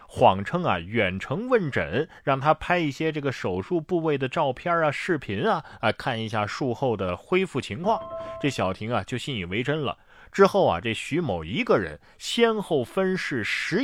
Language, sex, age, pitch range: Chinese, male, 30-49, 115-160 Hz